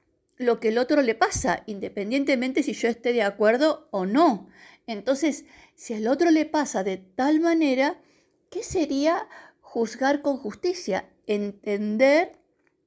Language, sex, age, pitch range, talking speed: Spanish, female, 50-69, 220-310 Hz, 135 wpm